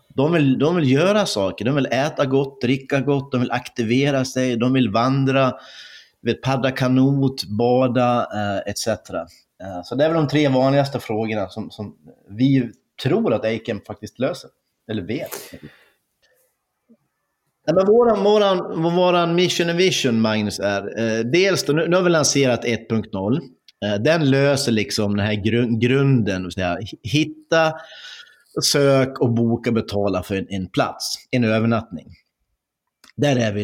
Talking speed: 150 wpm